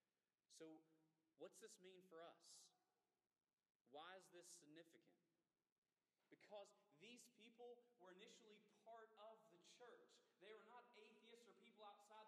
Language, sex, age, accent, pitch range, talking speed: English, male, 30-49, American, 190-240 Hz, 125 wpm